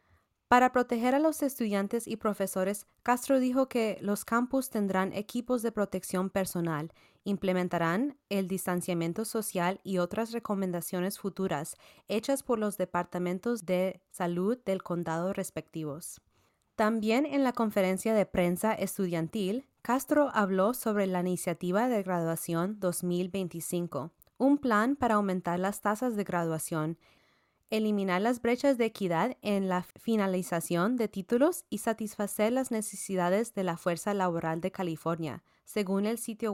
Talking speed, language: 130 wpm, Spanish